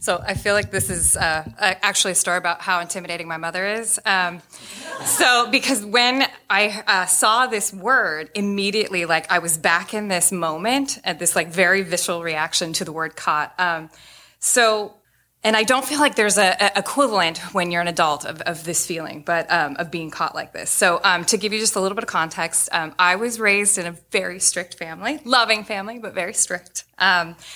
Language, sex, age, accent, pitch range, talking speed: English, female, 20-39, American, 170-215 Hz, 205 wpm